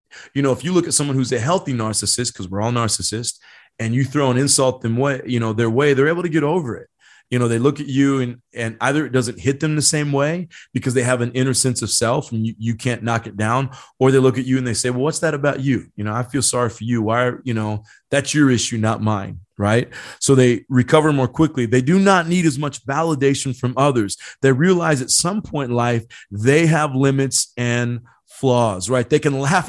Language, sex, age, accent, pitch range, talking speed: English, male, 30-49, American, 120-150 Hz, 250 wpm